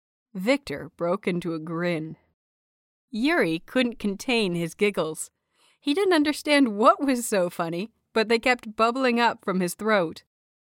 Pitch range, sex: 180-250 Hz, female